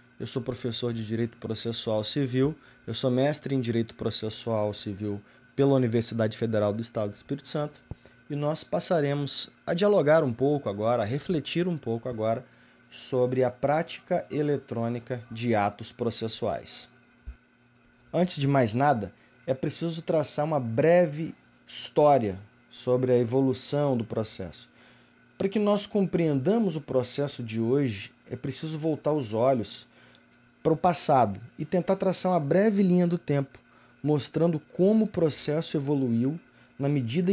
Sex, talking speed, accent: male, 140 wpm, Brazilian